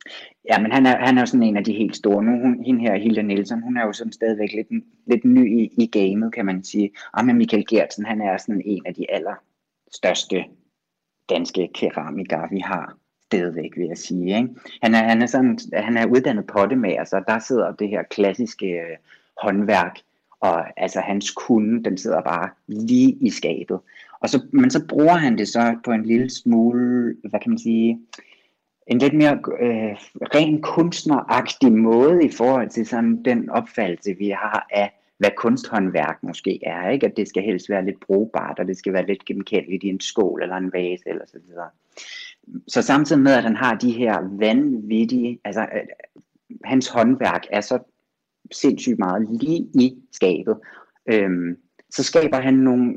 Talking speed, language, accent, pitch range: 185 wpm, Danish, native, 105-145 Hz